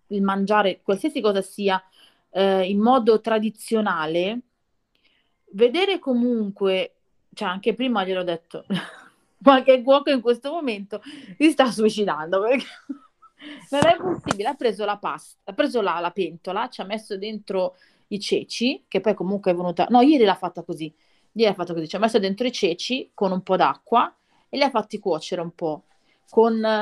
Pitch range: 190-250 Hz